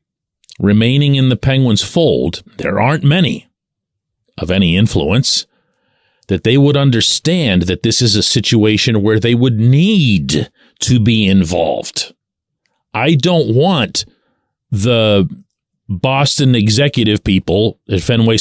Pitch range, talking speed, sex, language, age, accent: 110-155 Hz, 115 wpm, male, English, 40-59, American